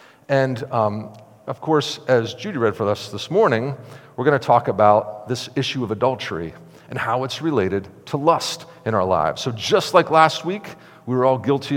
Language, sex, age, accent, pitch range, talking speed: English, male, 50-69, American, 120-155 Hz, 195 wpm